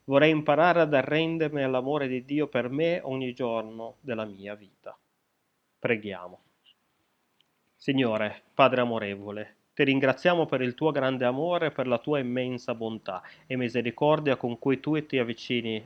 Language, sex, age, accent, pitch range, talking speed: Italian, male, 30-49, native, 115-140 Hz, 145 wpm